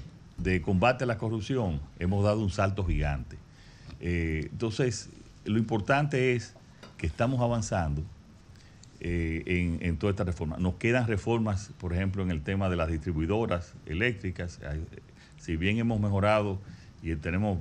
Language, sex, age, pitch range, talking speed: Spanish, male, 40-59, 85-115 Hz, 145 wpm